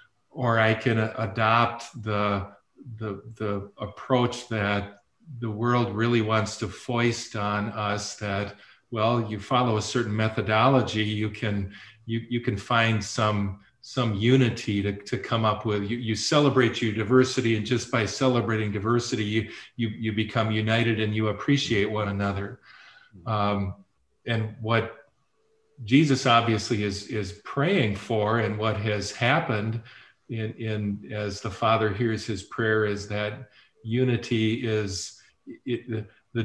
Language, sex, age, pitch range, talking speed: English, male, 40-59, 105-120 Hz, 140 wpm